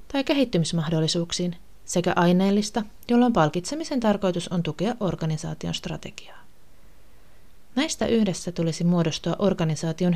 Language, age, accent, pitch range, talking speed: Finnish, 30-49, native, 165-210 Hz, 95 wpm